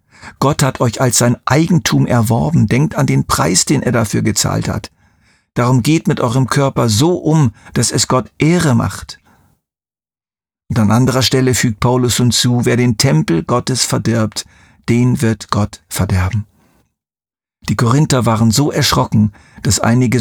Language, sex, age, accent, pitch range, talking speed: German, male, 50-69, German, 105-130 Hz, 150 wpm